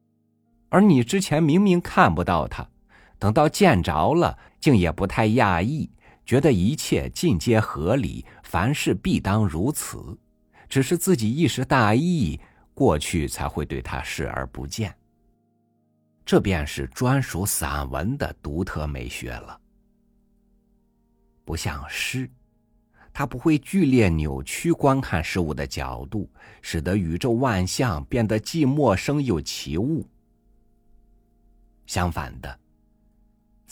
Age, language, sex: 50-69, Chinese, male